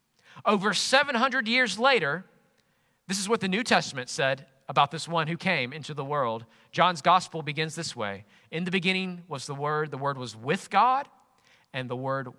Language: English